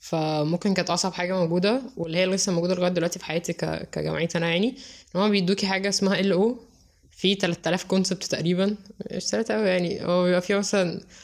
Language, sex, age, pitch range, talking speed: Arabic, female, 10-29, 170-205 Hz, 170 wpm